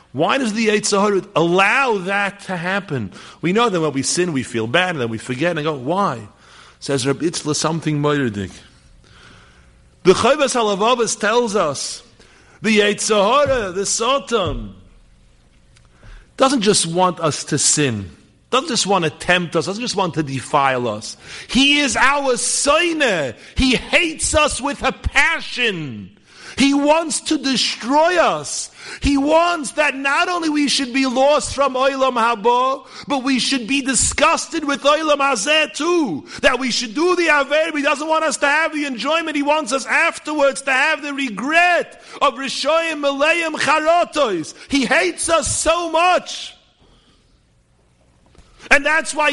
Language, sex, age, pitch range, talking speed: English, male, 50-69, 180-295 Hz, 155 wpm